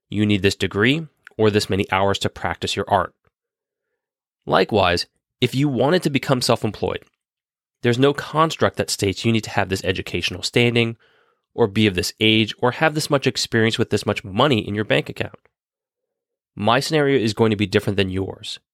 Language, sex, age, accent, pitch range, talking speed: English, male, 30-49, American, 100-130 Hz, 185 wpm